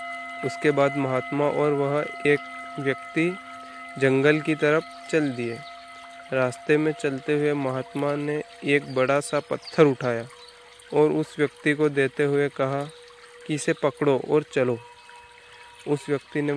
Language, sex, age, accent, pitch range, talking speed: Hindi, male, 20-39, native, 135-165 Hz, 140 wpm